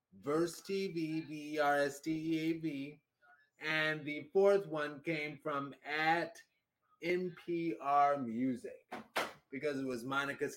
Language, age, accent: English, 30-49, American